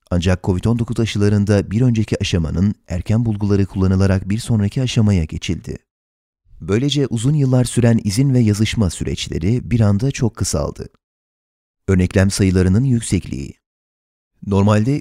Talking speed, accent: 115 wpm, native